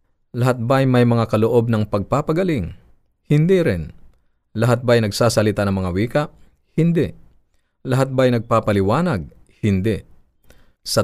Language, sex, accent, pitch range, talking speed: Filipino, male, native, 100-130 Hz, 115 wpm